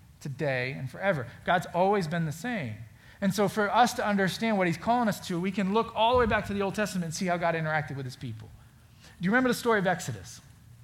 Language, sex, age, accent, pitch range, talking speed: English, male, 40-59, American, 135-195 Hz, 250 wpm